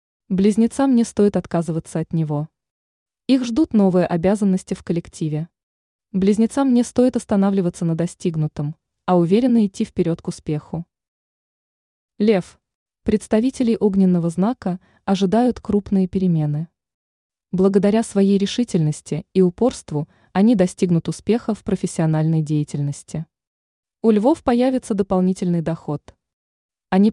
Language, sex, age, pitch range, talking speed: Russian, female, 20-39, 165-220 Hz, 105 wpm